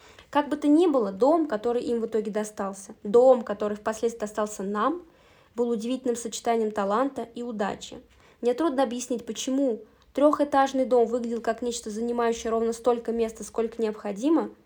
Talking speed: 150 wpm